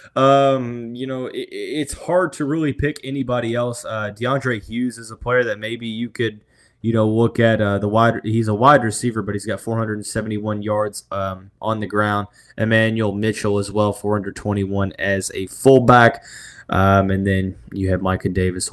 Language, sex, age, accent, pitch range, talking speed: English, male, 20-39, American, 100-125 Hz, 175 wpm